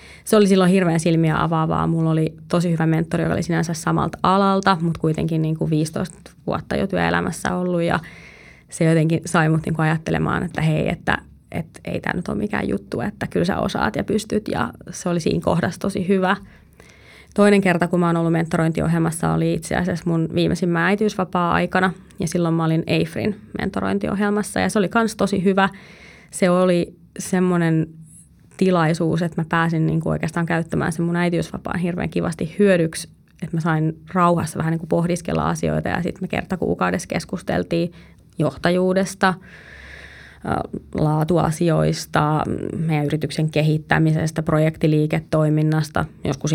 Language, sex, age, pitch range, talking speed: Finnish, female, 20-39, 160-185 Hz, 150 wpm